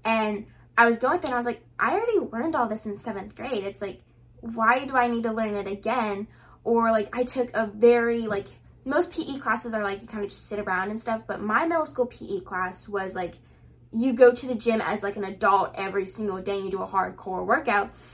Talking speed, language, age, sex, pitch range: 240 wpm, English, 10-29, female, 200-235 Hz